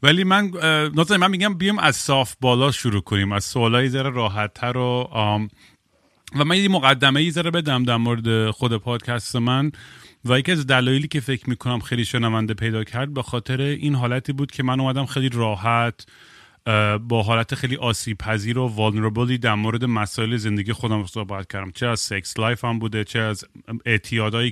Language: Persian